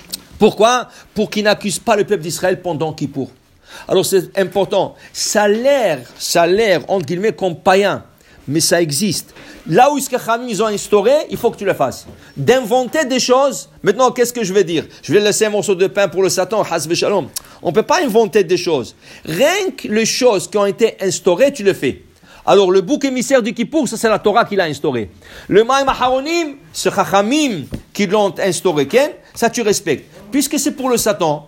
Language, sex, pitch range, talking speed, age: English, male, 185-245 Hz, 205 wpm, 50-69